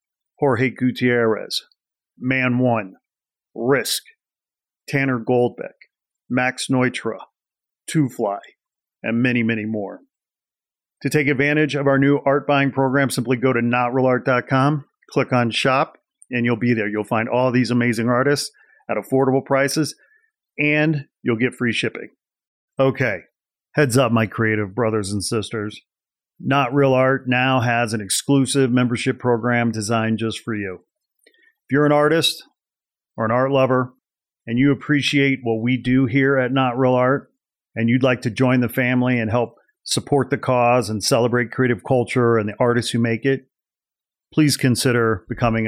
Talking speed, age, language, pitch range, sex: 150 wpm, 40-59, English, 120-135 Hz, male